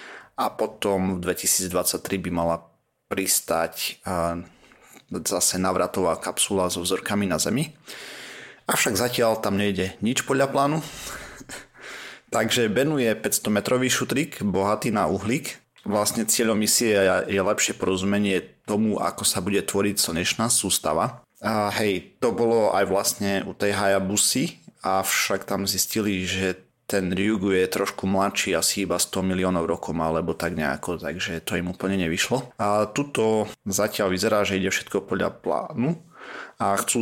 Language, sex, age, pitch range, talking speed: Slovak, male, 30-49, 90-105 Hz, 135 wpm